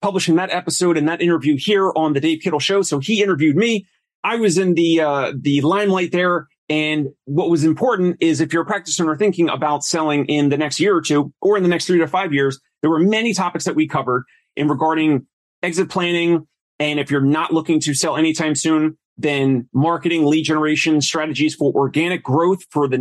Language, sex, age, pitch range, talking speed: English, male, 30-49, 145-170 Hz, 210 wpm